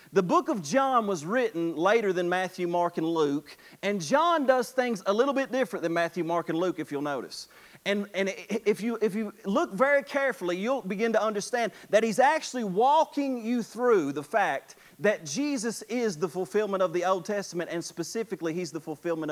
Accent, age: American, 40-59